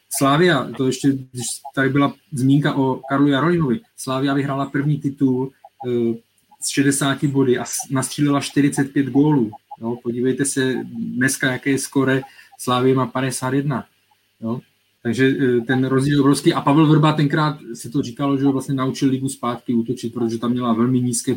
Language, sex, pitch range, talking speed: Czech, male, 130-150 Hz, 150 wpm